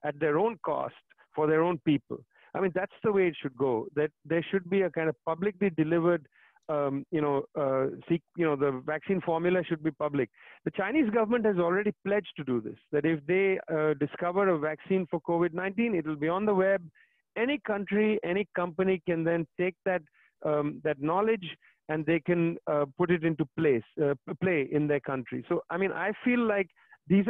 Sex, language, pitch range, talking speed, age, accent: male, English, 160-205 Hz, 205 wpm, 40-59, Indian